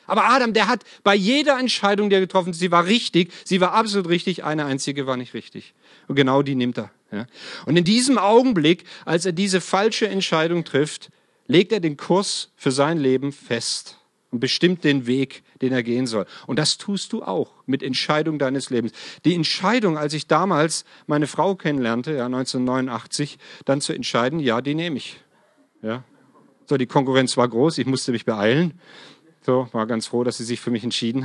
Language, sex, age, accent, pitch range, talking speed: German, male, 40-59, German, 135-190 Hz, 190 wpm